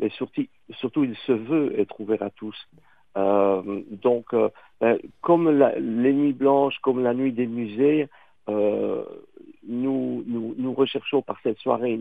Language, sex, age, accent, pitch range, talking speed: French, male, 50-69, French, 110-135 Hz, 150 wpm